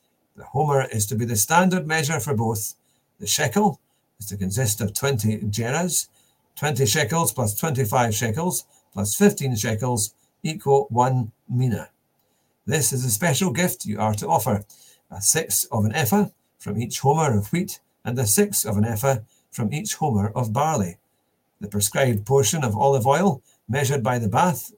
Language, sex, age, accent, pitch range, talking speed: English, male, 50-69, British, 105-150 Hz, 165 wpm